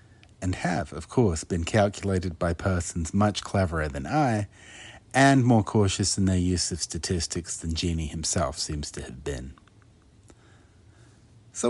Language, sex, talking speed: English, male, 145 wpm